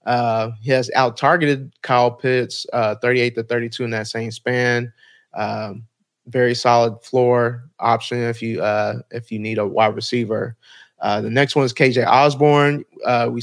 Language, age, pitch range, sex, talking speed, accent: English, 30-49, 120-135 Hz, male, 170 wpm, American